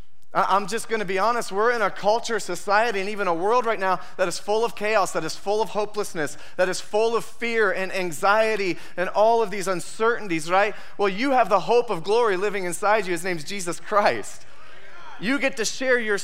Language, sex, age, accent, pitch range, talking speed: English, male, 30-49, American, 190-225 Hz, 220 wpm